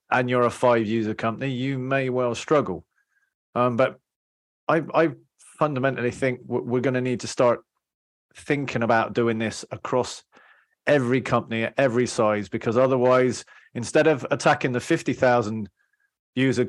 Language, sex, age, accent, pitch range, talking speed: English, male, 30-49, British, 120-150 Hz, 135 wpm